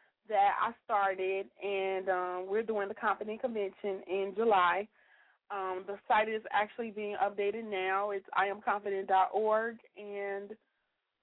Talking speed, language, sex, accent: 125 wpm, English, female, American